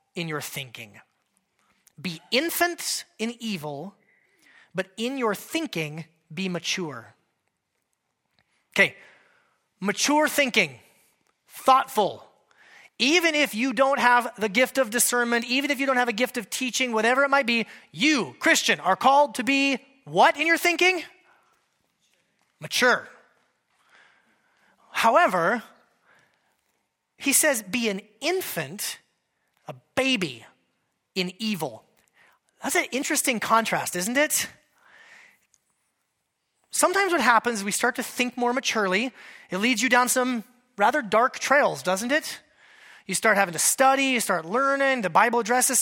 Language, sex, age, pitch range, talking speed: English, male, 30-49, 215-275 Hz, 125 wpm